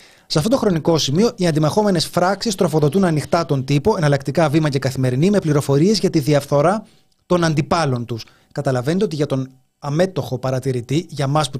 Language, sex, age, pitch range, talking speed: Greek, male, 30-49, 140-180 Hz, 170 wpm